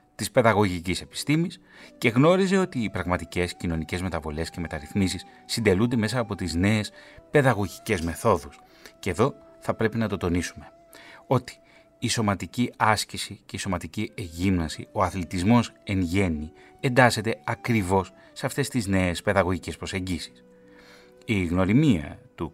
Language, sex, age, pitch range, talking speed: Greek, male, 30-49, 85-120 Hz, 130 wpm